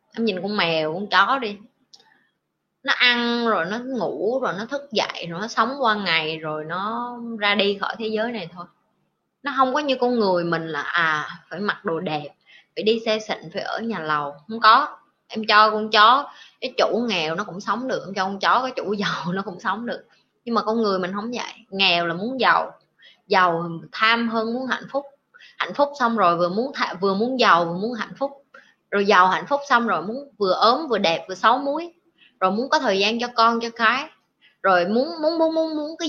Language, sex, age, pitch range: Vietnamese, female, 20-39, 190-250 Hz